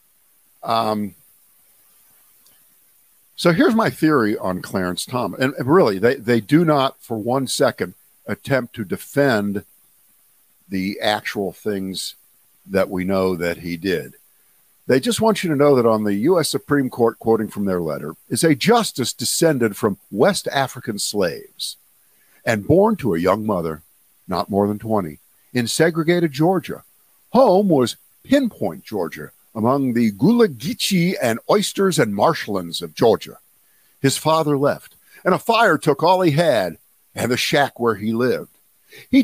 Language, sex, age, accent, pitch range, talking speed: English, male, 50-69, American, 115-170 Hz, 145 wpm